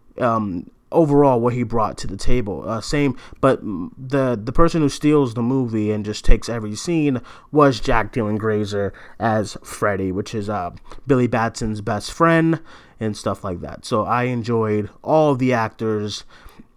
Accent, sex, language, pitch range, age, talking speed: American, male, English, 110-145 Hz, 30-49, 170 wpm